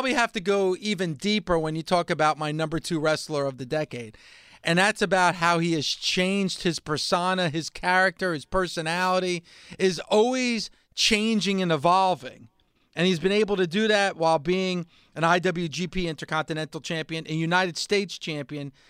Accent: American